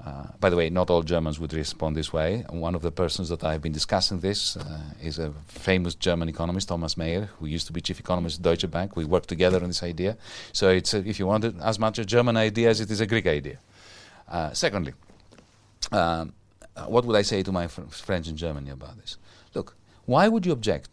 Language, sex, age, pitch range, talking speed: English, male, 40-59, 85-110 Hz, 240 wpm